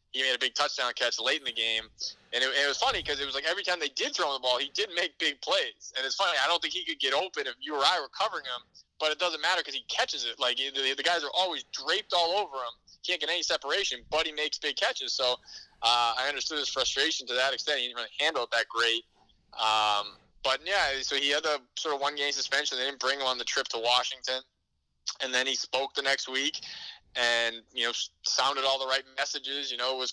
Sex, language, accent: male, English, American